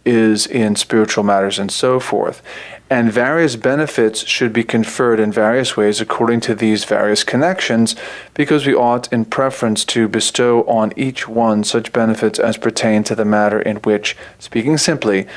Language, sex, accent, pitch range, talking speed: English, male, American, 110-130 Hz, 165 wpm